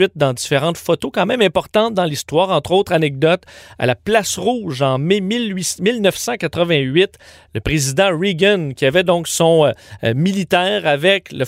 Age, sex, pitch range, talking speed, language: 40-59, male, 145-190 Hz, 155 wpm, French